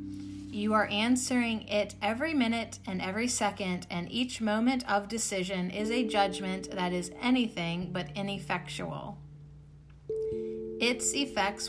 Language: English